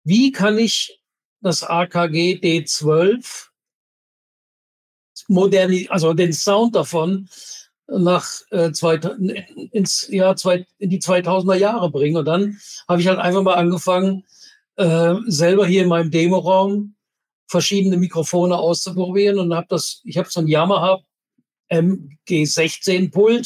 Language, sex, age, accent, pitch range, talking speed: German, male, 60-79, German, 170-195 Hz, 125 wpm